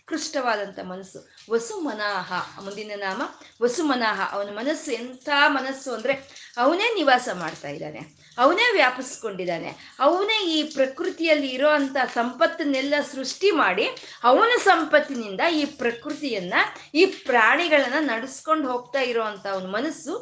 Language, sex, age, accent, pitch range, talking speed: Kannada, female, 20-39, native, 230-315 Hz, 100 wpm